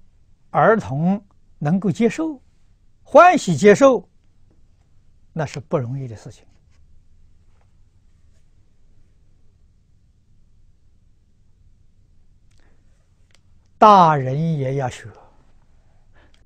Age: 60-79